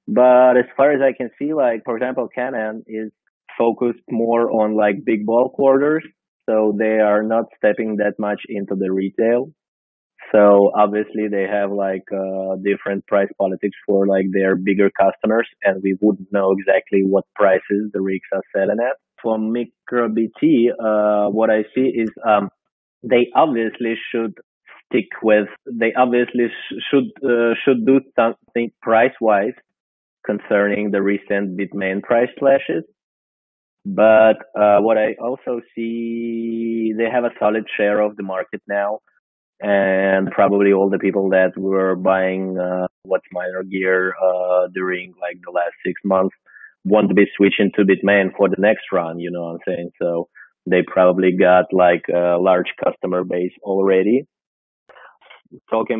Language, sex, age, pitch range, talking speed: English, male, 20-39, 95-115 Hz, 150 wpm